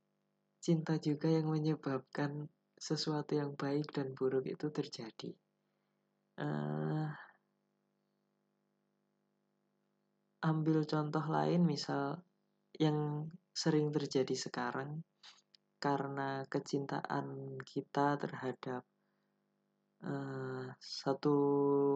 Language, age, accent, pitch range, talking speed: Indonesian, 20-39, native, 135-160 Hz, 70 wpm